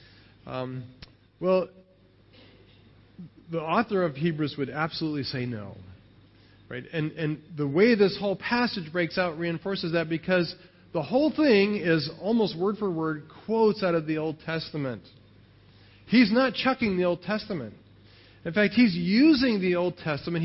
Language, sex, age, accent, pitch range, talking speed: English, male, 40-59, American, 120-195 Hz, 145 wpm